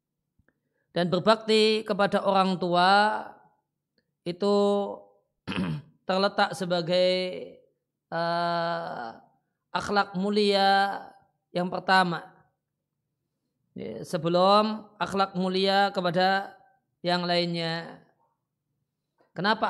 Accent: native